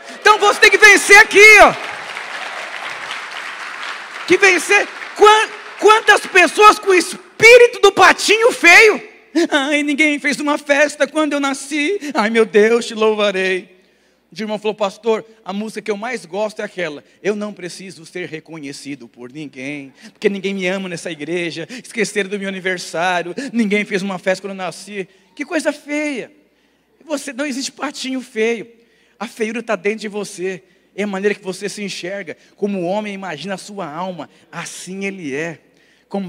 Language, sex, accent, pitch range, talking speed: Portuguese, male, Brazilian, 190-260 Hz, 160 wpm